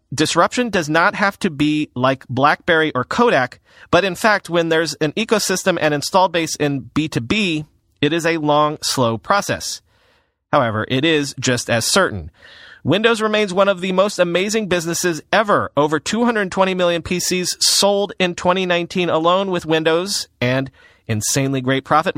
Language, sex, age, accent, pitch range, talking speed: English, male, 40-59, American, 135-185 Hz, 155 wpm